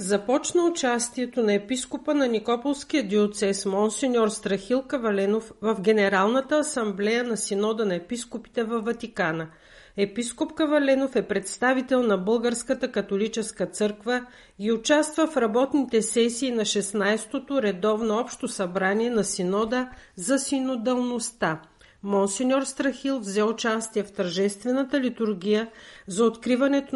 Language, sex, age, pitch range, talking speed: Bulgarian, female, 50-69, 205-255 Hz, 115 wpm